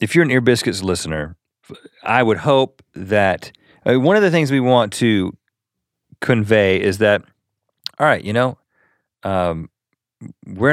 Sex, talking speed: male, 145 wpm